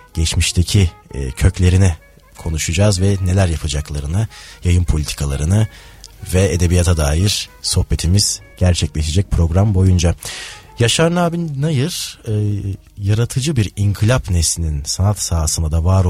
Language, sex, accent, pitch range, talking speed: Turkish, male, native, 80-110 Hz, 95 wpm